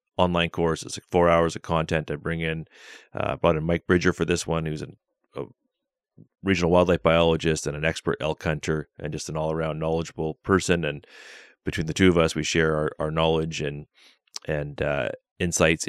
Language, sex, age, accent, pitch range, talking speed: English, male, 30-49, American, 75-85 Hz, 195 wpm